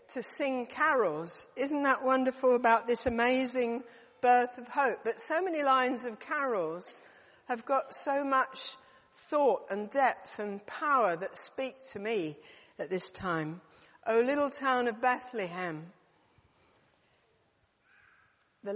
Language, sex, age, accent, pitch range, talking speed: English, female, 60-79, British, 205-265 Hz, 130 wpm